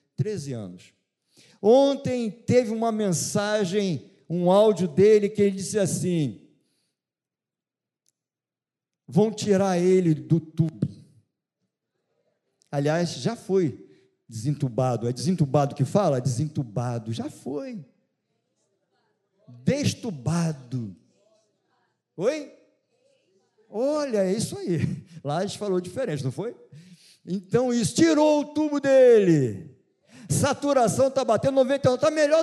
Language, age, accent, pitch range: Portuguese, 50-69, Brazilian, 155-250 Hz